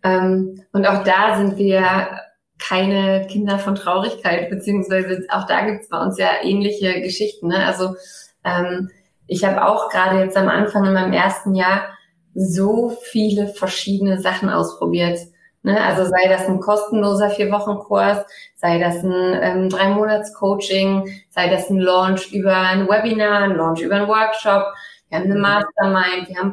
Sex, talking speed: female, 155 wpm